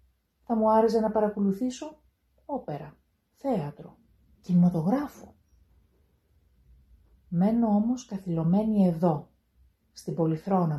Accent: native